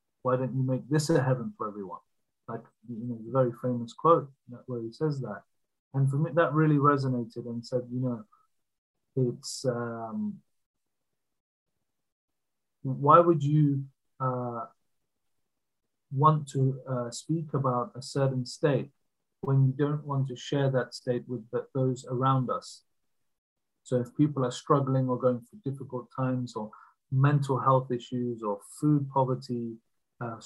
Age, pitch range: 30-49, 120-135 Hz